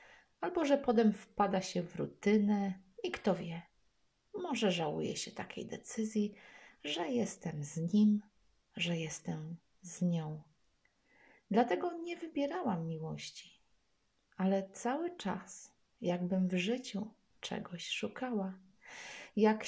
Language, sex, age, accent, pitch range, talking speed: Polish, female, 30-49, native, 185-220 Hz, 110 wpm